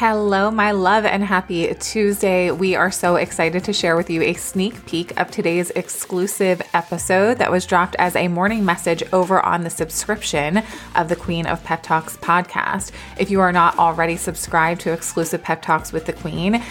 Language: English